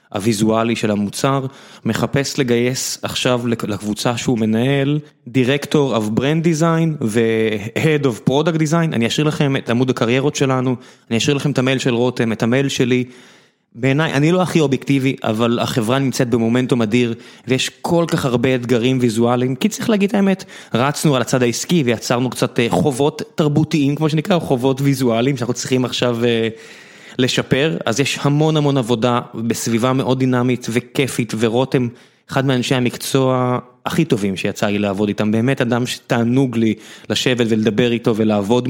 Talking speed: 145 wpm